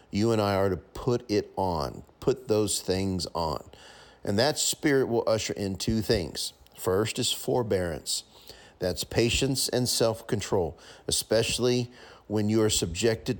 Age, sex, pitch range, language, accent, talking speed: 40-59, male, 95-120 Hz, English, American, 145 wpm